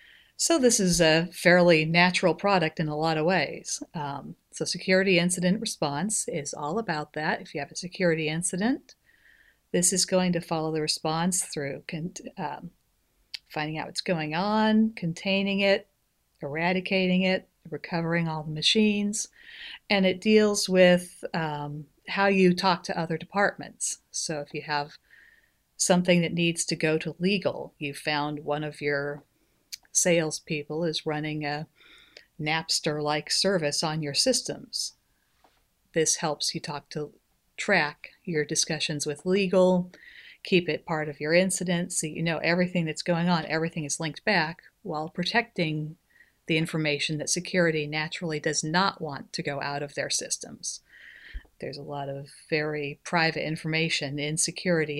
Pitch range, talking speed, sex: 155-185 Hz, 150 wpm, female